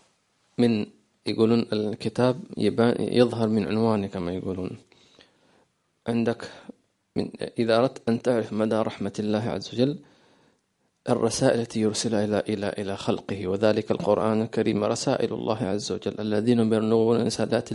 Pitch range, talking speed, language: 110-130 Hz, 115 wpm, English